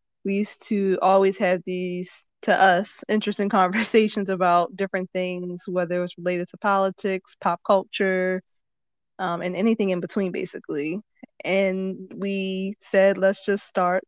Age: 20-39